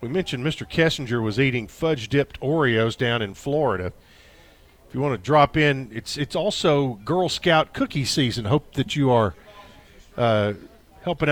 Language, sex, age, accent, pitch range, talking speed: English, male, 50-69, American, 130-185 Hz, 160 wpm